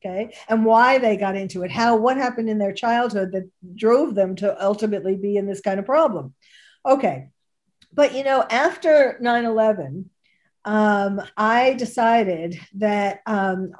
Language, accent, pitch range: English, American, 190-230 Hz